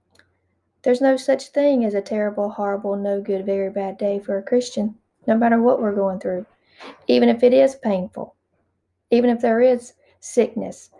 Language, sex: English, female